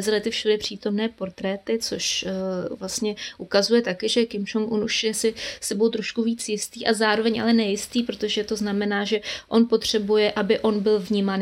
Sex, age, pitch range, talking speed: female, 20-39, 200-230 Hz, 170 wpm